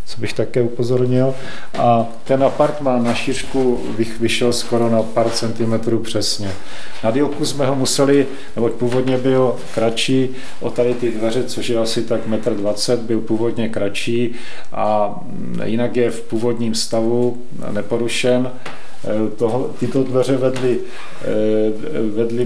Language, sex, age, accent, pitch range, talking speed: Czech, male, 40-59, native, 110-125 Hz, 130 wpm